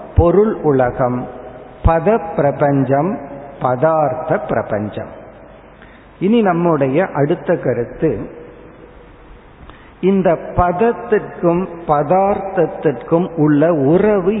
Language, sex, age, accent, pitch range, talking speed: Tamil, male, 50-69, native, 140-185 Hz, 65 wpm